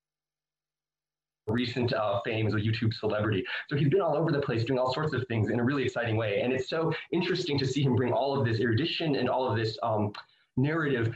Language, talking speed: Italian, 220 wpm